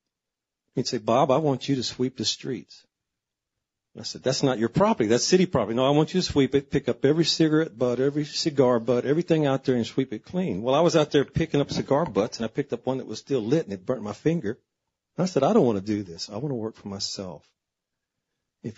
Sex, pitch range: male, 115-145 Hz